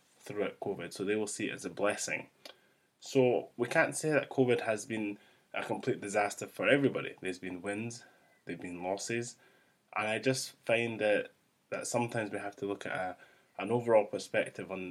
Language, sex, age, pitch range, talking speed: English, male, 20-39, 95-120 Hz, 175 wpm